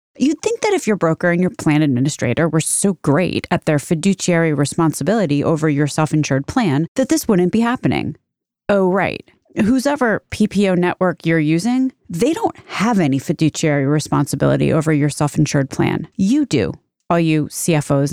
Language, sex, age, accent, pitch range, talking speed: English, female, 30-49, American, 155-215 Hz, 160 wpm